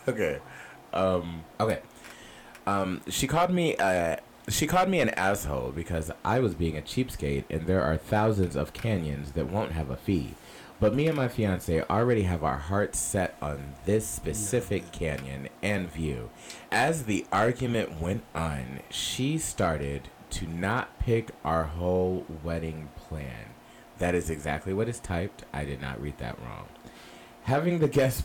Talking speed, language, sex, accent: 160 wpm, English, male, American